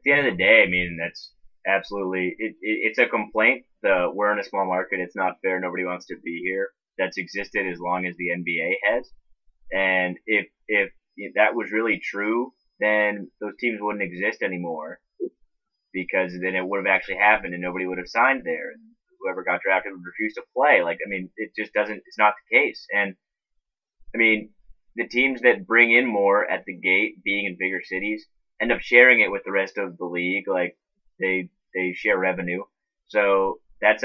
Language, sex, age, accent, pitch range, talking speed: English, male, 20-39, American, 90-105 Hz, 200 wpm